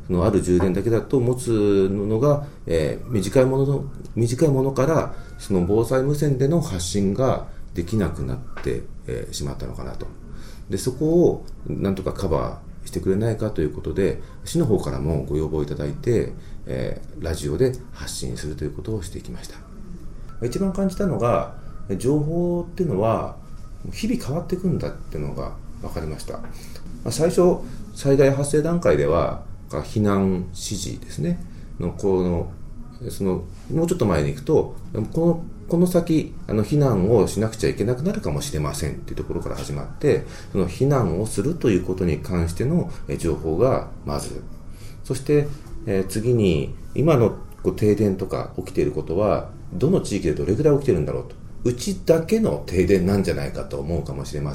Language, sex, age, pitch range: Japanese, male, 40-59, 85-135 Hz